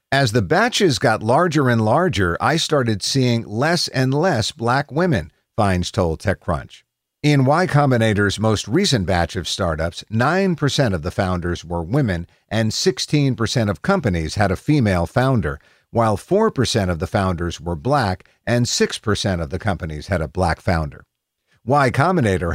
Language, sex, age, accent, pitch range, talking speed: English, male, 50-69, American, 95-145 Hz, 155 wpm